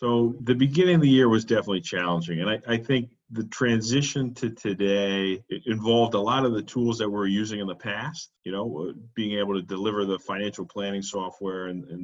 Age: 40-59